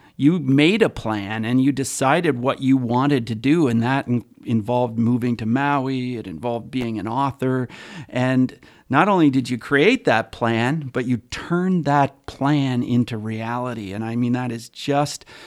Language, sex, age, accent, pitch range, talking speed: English, male, 50-69, American, 115-140 Hz, 170 wpm